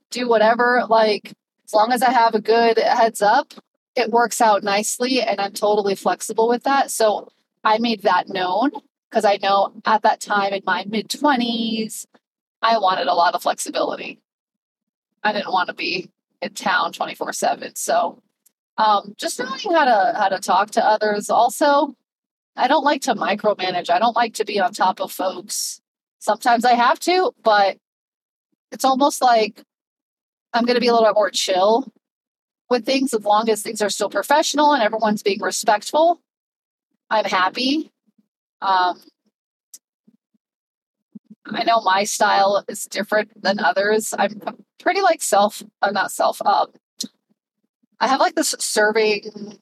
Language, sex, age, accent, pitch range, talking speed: English, female, 30-49, American, 200-245 Hz, 155 wpm